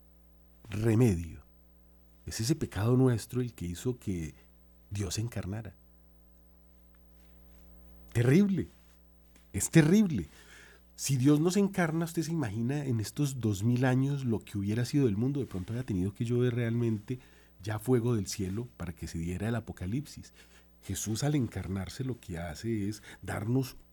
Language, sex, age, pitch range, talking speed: Spanish, male, 40-59, 90-125 Hz, 150 wpm